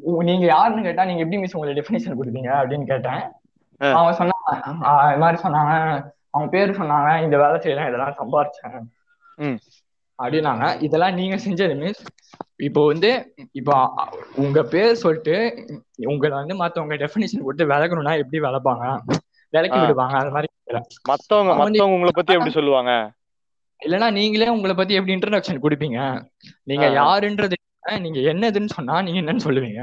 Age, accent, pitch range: 20-39, native, 145-190 Hz